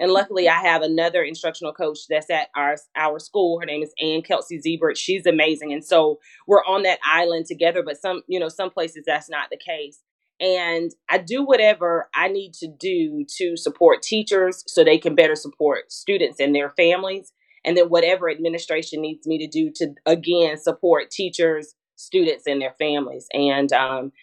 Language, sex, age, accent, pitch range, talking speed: English, female, 30-49, American, 155-190 Hz, 185 wpm